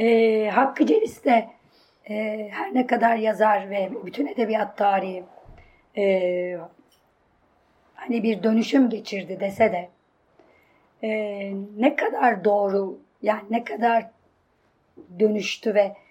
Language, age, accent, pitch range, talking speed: Turkish, 30-49, native, 200-235 Hz, 110 wpm